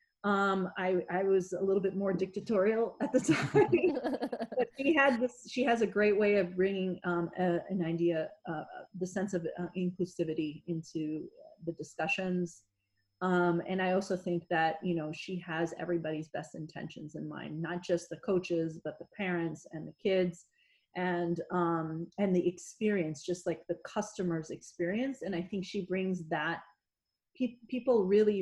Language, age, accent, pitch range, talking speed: English, 30-49, American, 170-200 Hz, 165 wpm